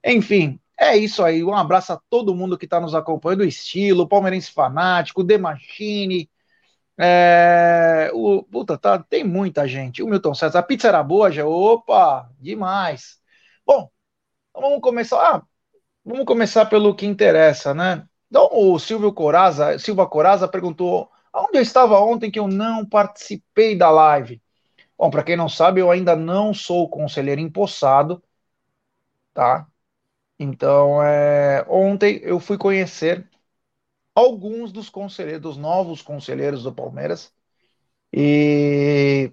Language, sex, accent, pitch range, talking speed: Portuguese, male, Brazilian, 150-205 Hz, 135 wpm